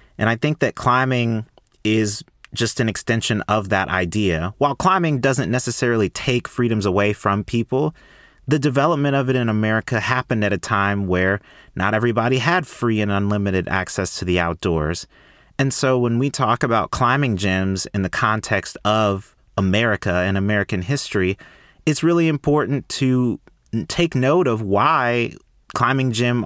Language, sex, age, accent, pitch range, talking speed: English, male, 30-49, American, 100-125 Hz, 155 wpm